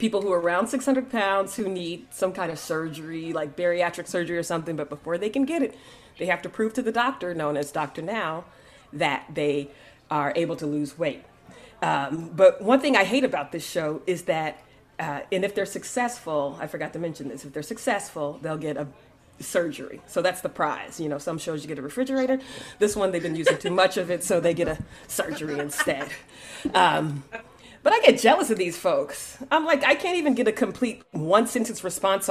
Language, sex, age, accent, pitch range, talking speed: English, female, 30-49, American, 165-235 Hz, 210 wpm